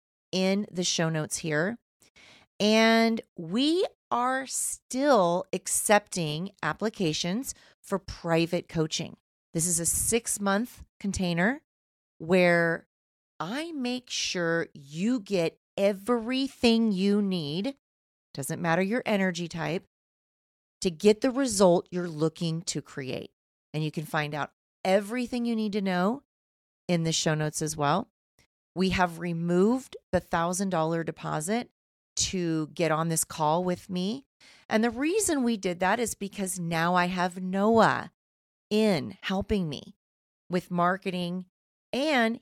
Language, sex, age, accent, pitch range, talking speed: English, female, 30-49, American, 165-220 Hz, 125 wpm